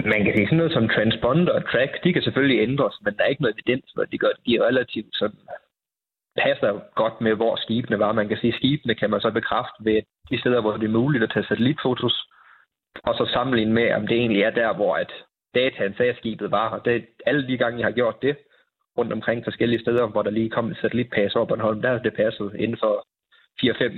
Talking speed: 235 wpm